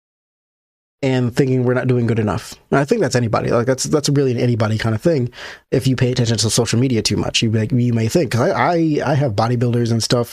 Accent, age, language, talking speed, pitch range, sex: American, 20-39, English, 250 wpm, 115-145 Hz, male